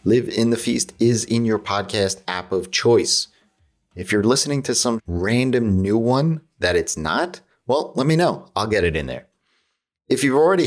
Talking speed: 190 wpm